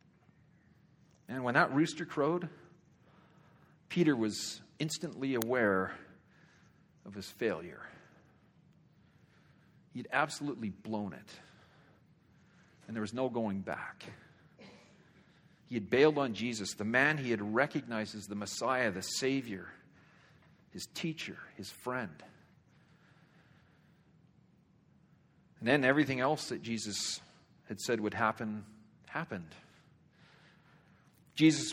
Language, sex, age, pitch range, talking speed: English, male, 50-69, 120-165 Hz, 100 wpm